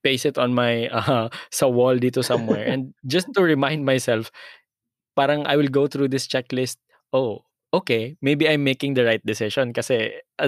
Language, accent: Filipino, native